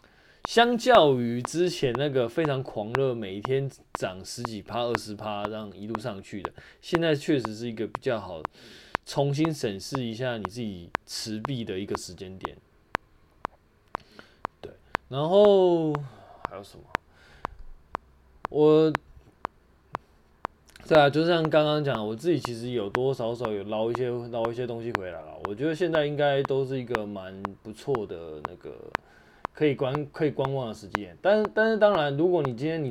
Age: 20-39